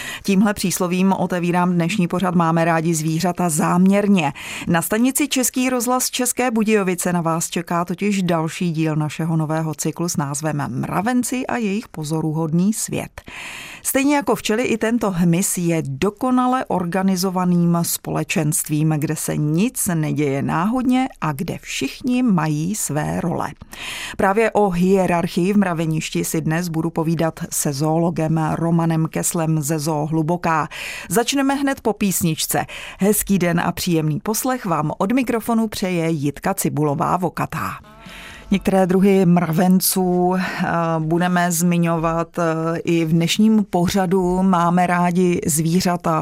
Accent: native